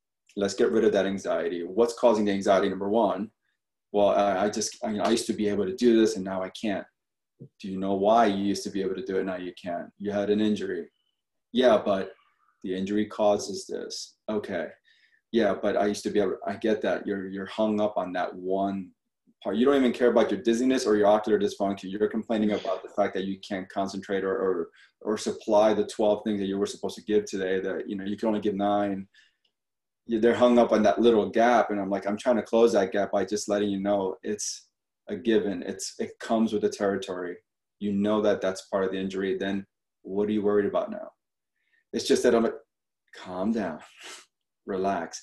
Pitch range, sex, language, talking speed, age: 95-110 Hz, male, English, 225 wpm, 20-39